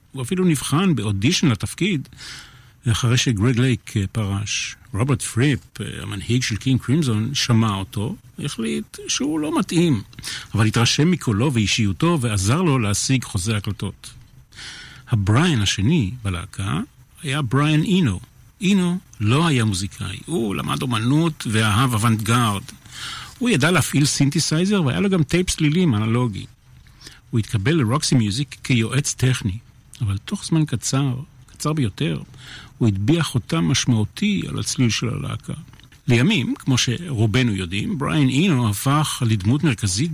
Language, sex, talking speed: Hebrew, male, 125 wpm